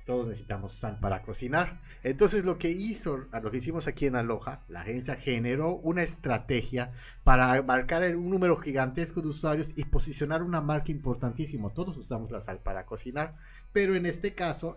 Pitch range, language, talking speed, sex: 110-150 Hz, Spanish, 170 wpm, male